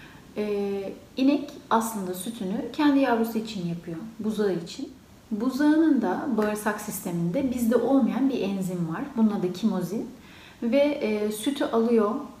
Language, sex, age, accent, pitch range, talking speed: Turkish, female, 40-59, native, 195-240 Hz, 125 wpm